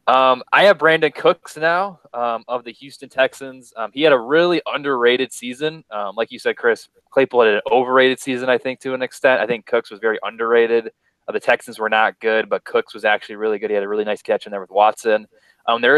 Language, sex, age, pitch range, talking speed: English, male, 20-39, 115-145 Hz, 235 wpm